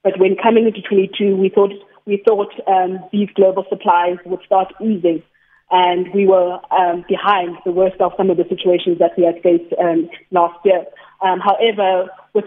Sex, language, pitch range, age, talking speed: female, English, 180-200 Hz, 20-39, 185 wpm